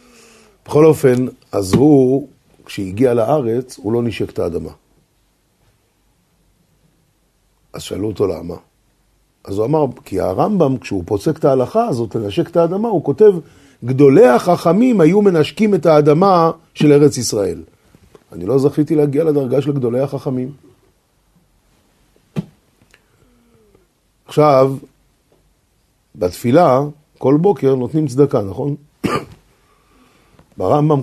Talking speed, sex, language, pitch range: 105 wpm, male, Hebrew, 115-150 Hz